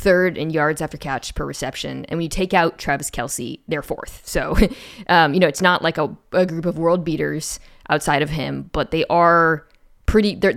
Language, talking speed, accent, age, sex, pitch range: English, 205 wpm, American, 20-39, female, 150-190 Hz